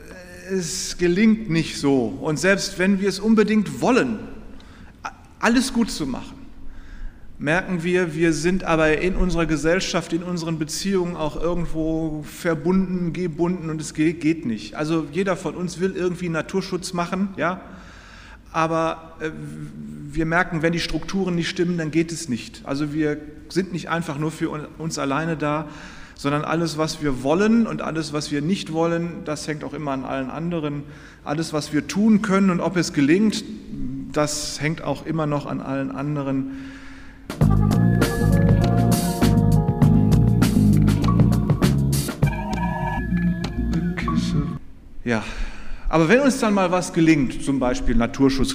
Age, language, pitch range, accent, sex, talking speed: 30-49, German, 140-180 Hz, German, male, 135 wpm